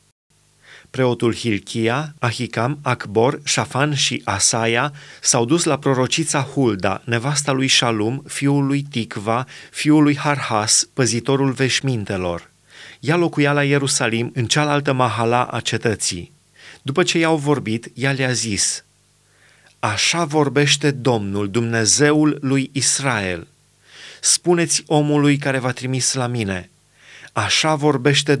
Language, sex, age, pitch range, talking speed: Romanian, male, 30-49, 120-150 Hz, 115 wpm